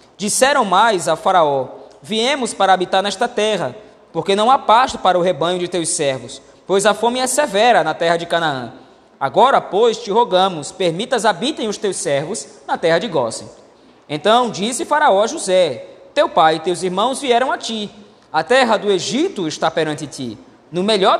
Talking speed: 180 wpm